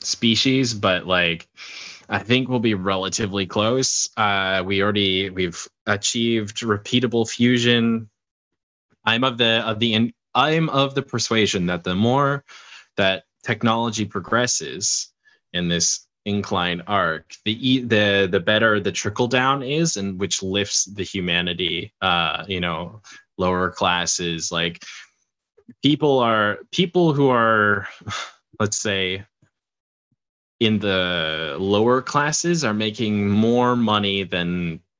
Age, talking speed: 20-39, 120 wpm